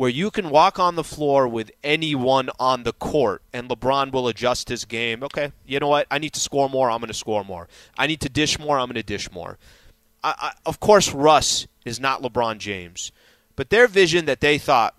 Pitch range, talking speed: 130-180 Hz, 220 wpm